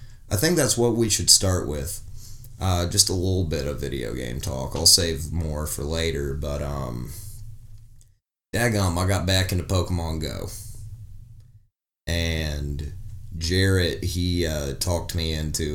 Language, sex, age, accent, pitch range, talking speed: English, male, 30-49, American, 80-105 Hz, 145 wpm